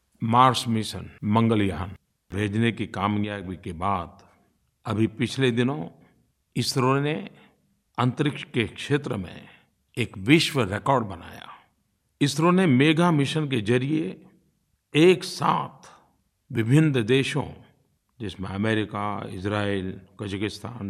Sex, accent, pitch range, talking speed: male, native, 105-155 Hz, 100 wpm